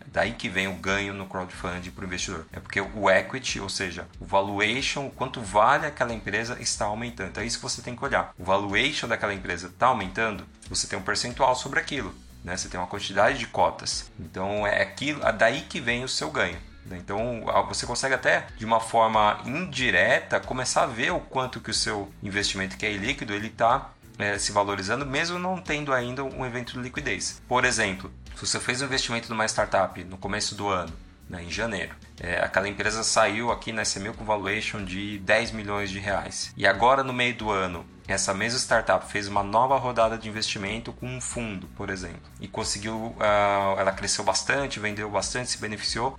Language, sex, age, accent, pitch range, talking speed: Portuguese, male, 30-49, Brazilian, 95-115 Hz, 200 wpm